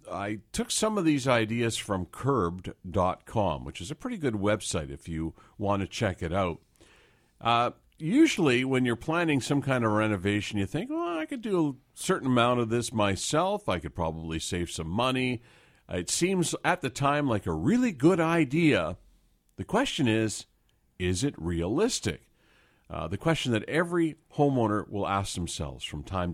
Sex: male